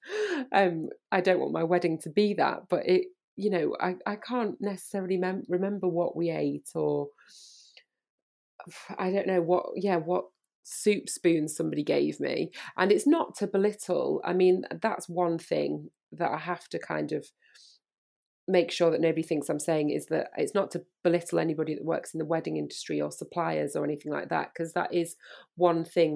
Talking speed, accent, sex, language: 185 wpm, British, female, English